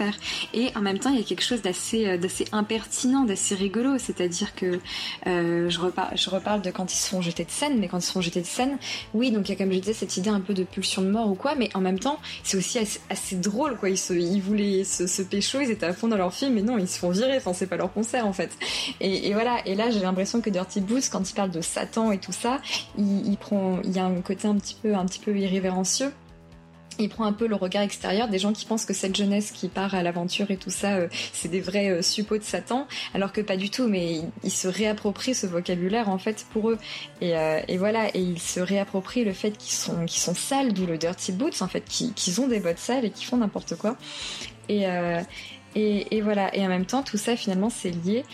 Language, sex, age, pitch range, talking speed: French, female, 20-39, 185-220 Hz, 270 wpm